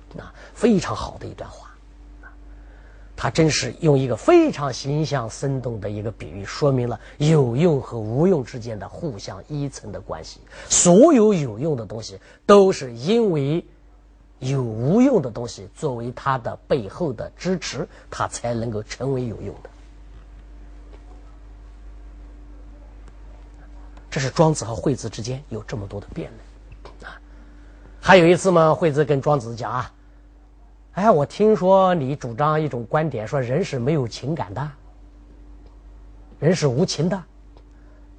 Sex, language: male, Chinese